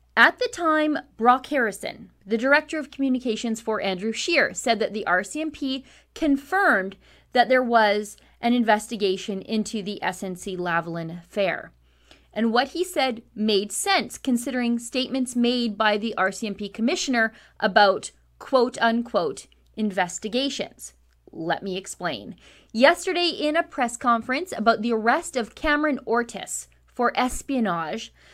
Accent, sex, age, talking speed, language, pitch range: American, female, 30-49, 125 wpm, English, 200-270 Hz